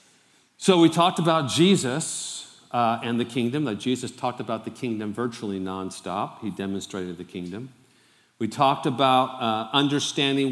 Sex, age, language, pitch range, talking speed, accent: male, 50-69, English, 115-150 Hz, 155 wpm, American